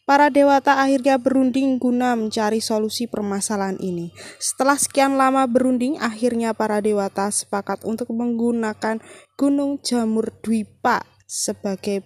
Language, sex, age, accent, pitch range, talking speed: Indonesian, female, 20-39, native, 210-275 Hz, 115 wpm